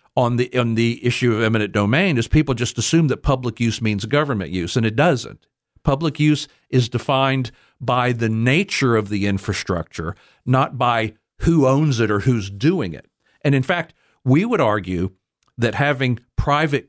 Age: 50-69